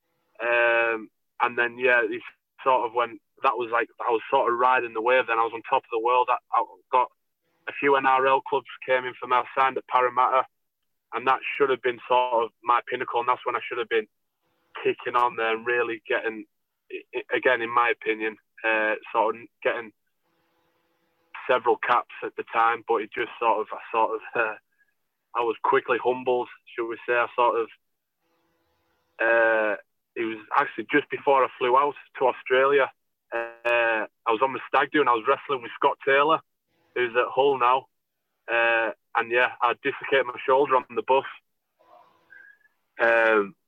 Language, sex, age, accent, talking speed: English, male, 20-39, British, 185 wpm